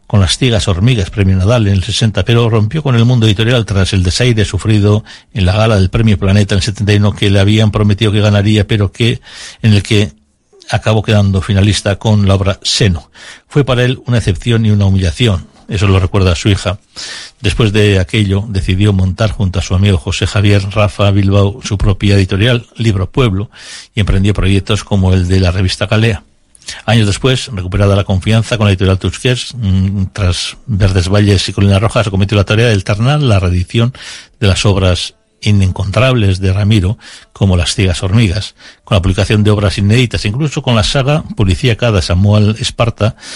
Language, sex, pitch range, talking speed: Spanish, male, 95-110 Hz, 185 wpm